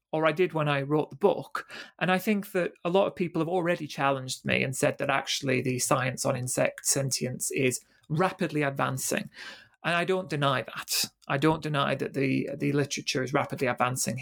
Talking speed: 200 wpm